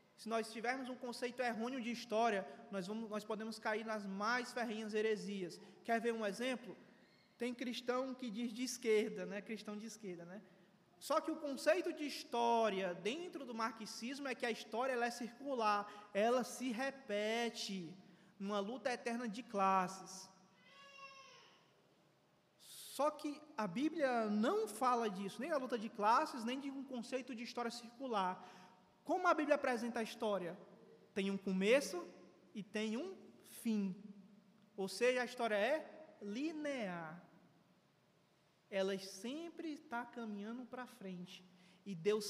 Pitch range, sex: 195-255 Hz, male